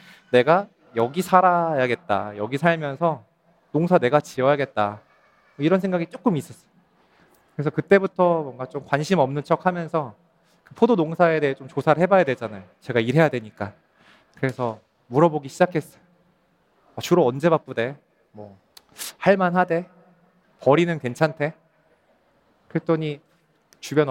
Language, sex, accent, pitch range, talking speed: English, male, Korean, 130-175 Hz, 100 wpm